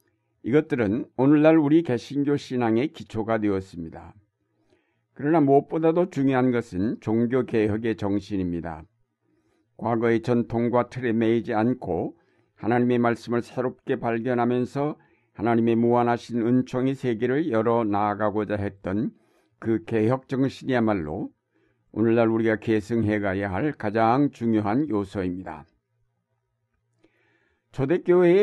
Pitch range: 110-125 Hz